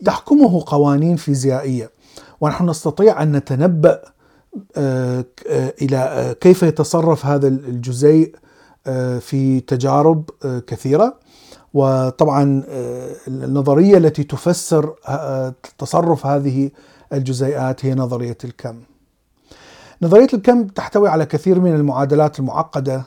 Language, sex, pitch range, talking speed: Arabic, male, 135-180 Hz, 85 wpm